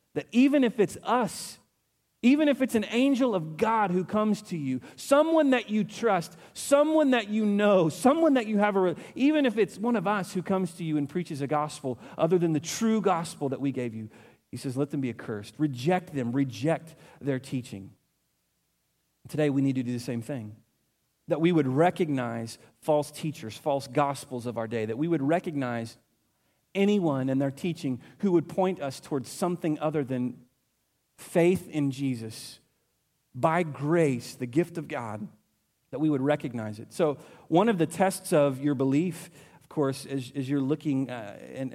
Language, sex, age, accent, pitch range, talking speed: English, male, 40-59, American, 130-180 Hz, 185 wpm